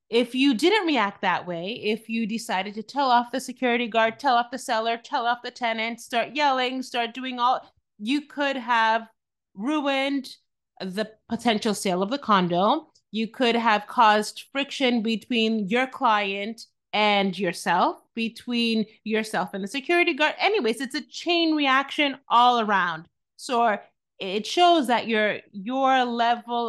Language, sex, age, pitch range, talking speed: English, female, 30-49, 215-275 Hz, 155 wpm